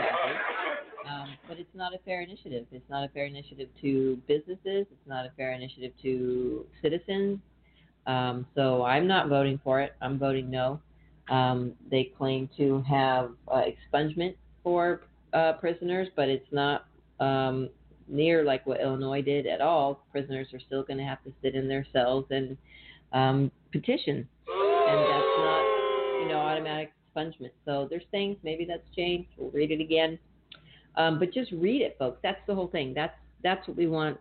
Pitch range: 135-160 Hz